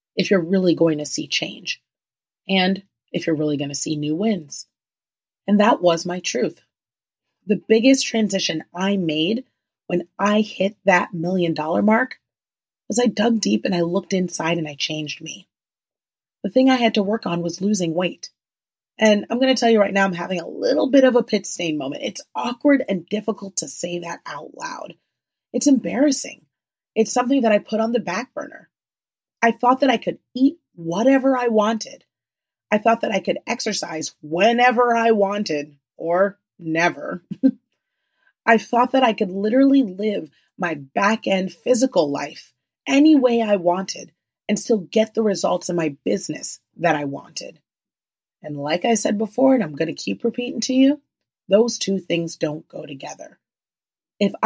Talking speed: 175 wpm